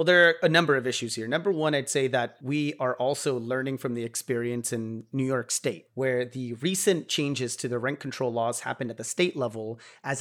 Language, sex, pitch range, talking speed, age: English, male, 125-165 Hz, 230 wpm, 30-49